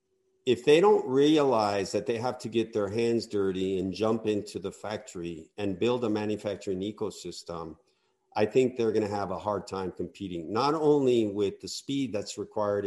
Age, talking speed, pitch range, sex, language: 50-69, 180 wpm, 100-135 Hz, male, English